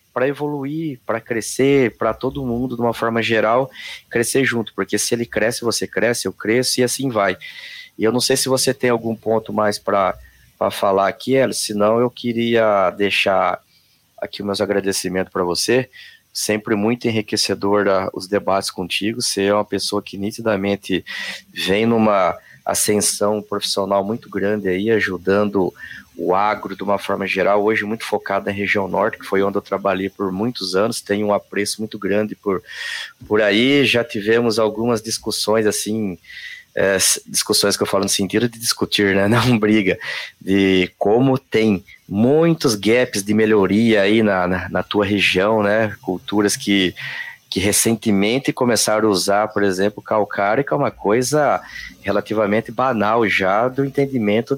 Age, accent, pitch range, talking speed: 20-39, Brazilian, 100-120 Hz, 160 wpm